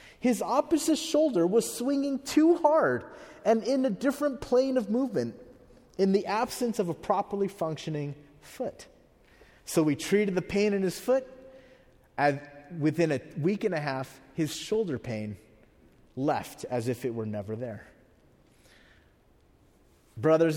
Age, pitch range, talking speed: 30-49, 120-180 Hz, 140 wpm